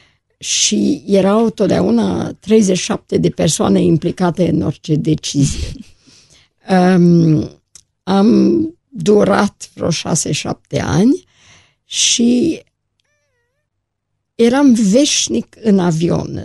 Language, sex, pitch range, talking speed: Romanian, female, 160-200 Hz, 75 wpm